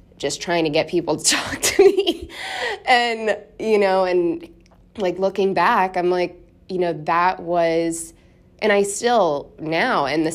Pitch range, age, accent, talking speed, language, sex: 165-205 Hz, 20-39, American, 160 wpm, English, female